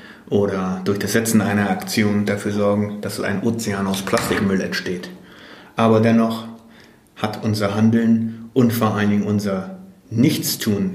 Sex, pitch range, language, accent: male, 100-115 Hz, German, German